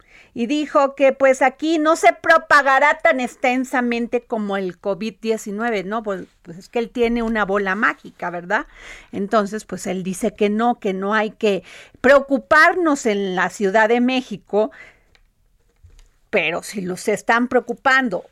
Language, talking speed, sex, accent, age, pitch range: Spanish, 145 wpm, female, Mexican, 40-59, 195-245 Hz